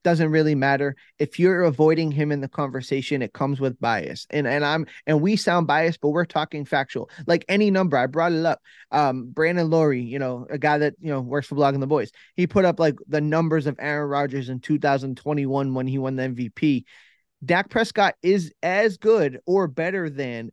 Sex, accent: male, American